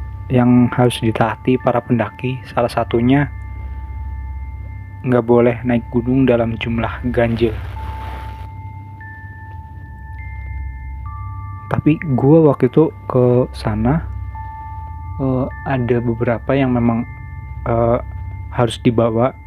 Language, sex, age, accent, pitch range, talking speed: Indonesian, male, 20-39, native, 95-120 Hz, 85 wpm